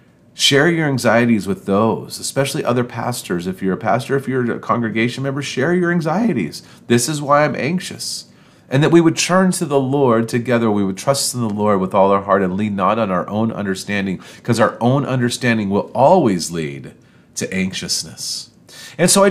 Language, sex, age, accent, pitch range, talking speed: English, male, 40-59, American, 100-140 Hz, 195 wpm